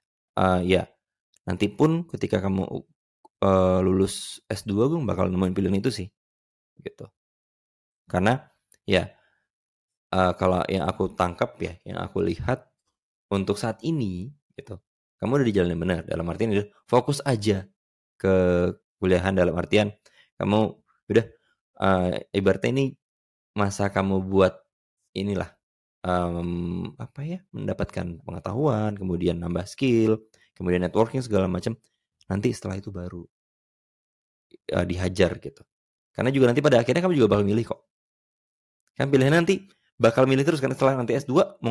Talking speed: 140 wpm